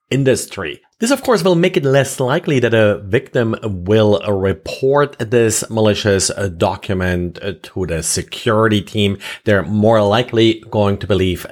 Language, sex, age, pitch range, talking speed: English, male, 30-49, 105-135 Hz, 140 wpm